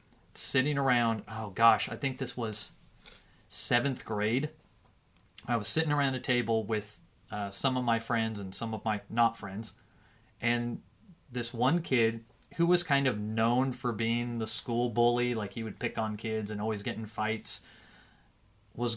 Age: 30-49